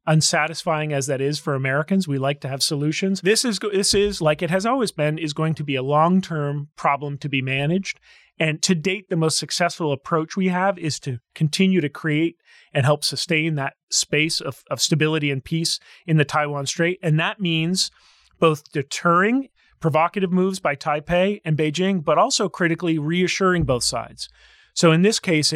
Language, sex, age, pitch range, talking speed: English, male, 30-49, 140-180 Hz, 185 wpm